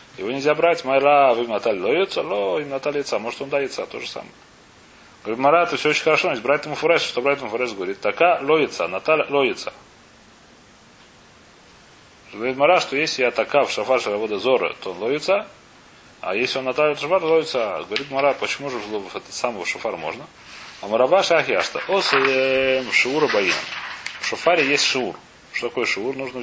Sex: male